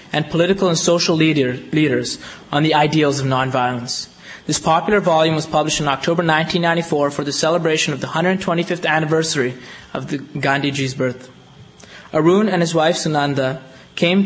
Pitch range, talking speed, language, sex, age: 140-175 Hz, 145 wpm, English, male, 20-39